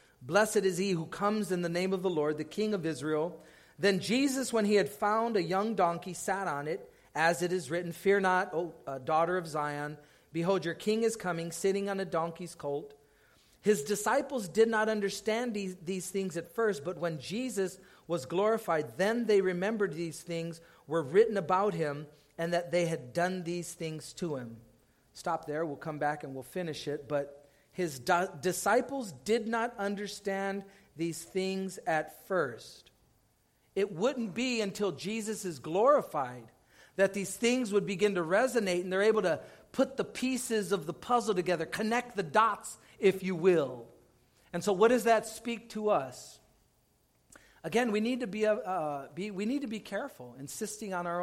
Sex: male